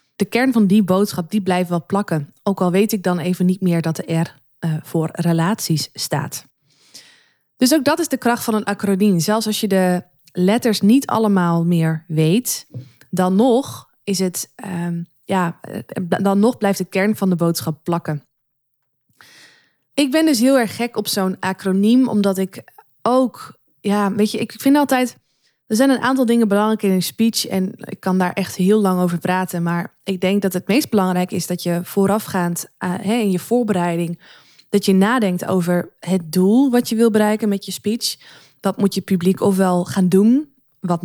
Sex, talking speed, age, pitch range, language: female, 180 wpm, 20-39, 175-215 Hz, Dutch